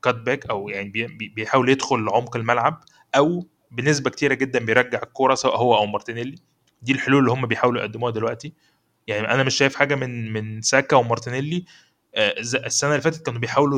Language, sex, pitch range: Arabic, male, 115-135 Hz